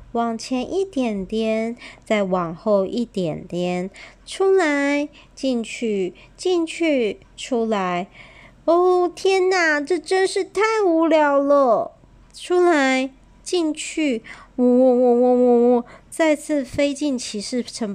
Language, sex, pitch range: Chinese, male, 215-320 Hz